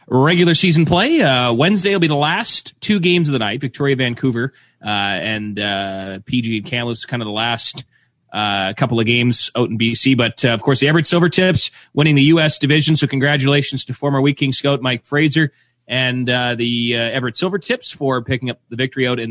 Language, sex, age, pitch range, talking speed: English, male, 30-49, 115-145 Hz, 205 wpm